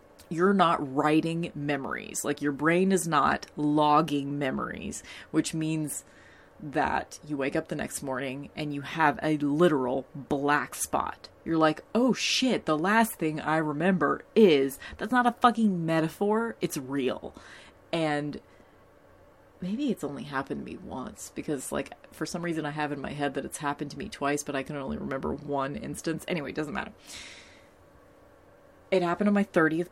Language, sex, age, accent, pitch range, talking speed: English, female, 30-49, American, 145-175 Hz, 170 wpm